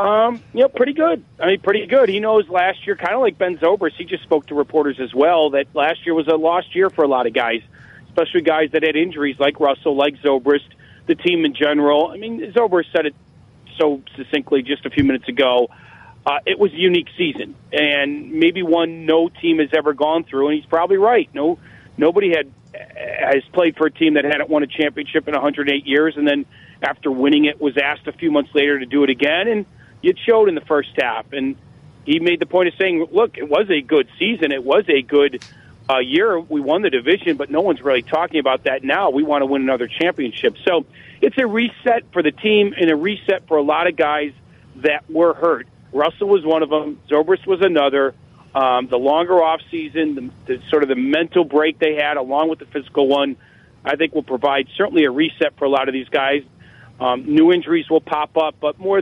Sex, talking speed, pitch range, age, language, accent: male, 225 wpm, 140-190 Hz, 40-59, English, American